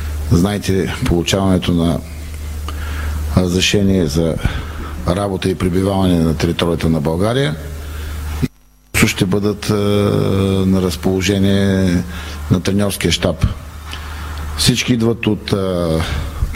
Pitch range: 75-105 Hz